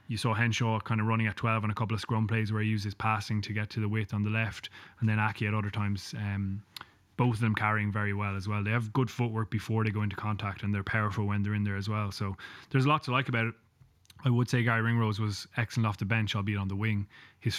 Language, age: English, 20-39